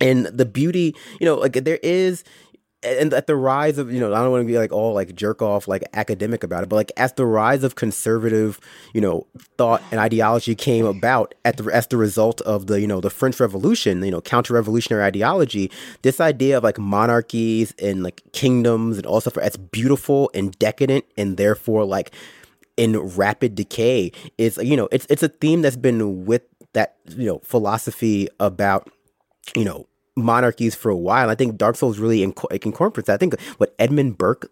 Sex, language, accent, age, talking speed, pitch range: male, English, American, 30-49, 200 wpm, 105-130 Hz